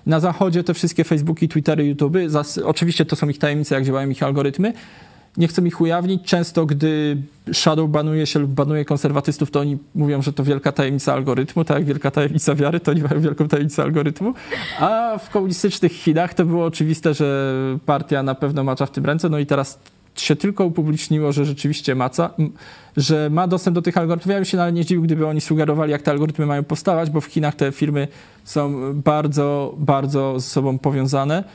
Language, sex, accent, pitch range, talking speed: Polish, male, native, 145-170 Hz, 195 wpm